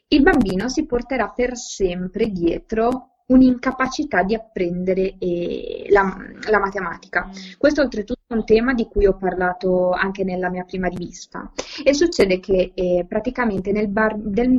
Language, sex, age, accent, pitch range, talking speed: Italian, female, 20-39, native, 190-255 Hz, 140 wpm